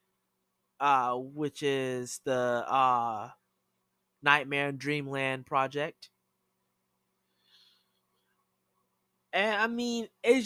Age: 20-39